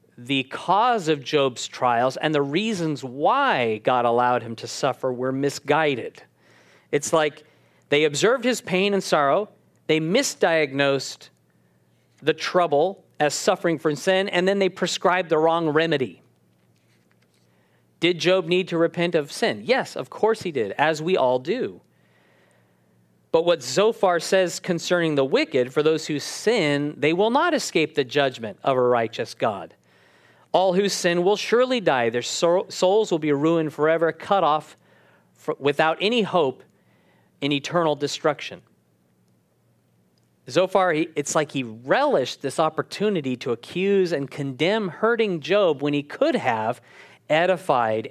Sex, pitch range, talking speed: male, 130-180 Hz, 145 wpm